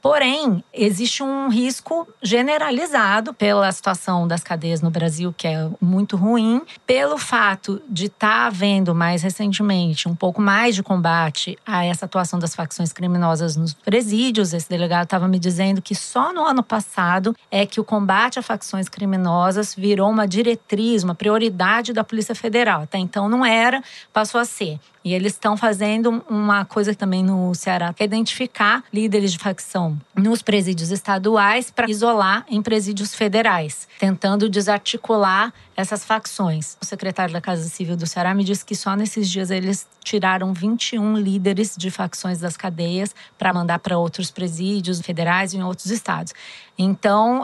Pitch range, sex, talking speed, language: 185-220 Hz, female, 160 wpm, Portuguese